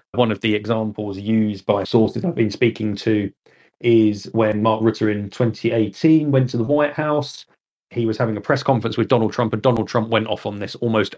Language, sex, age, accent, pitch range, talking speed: English, male, 30-49, British, 105-125 Hz, 210 wpm